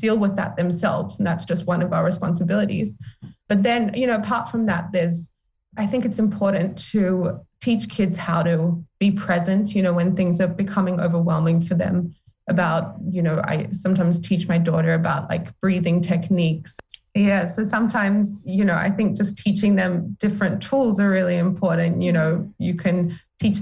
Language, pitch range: English, 170-200 Hz